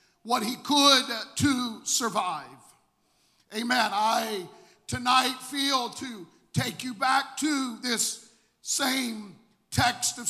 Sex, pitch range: male, 235-285 Hz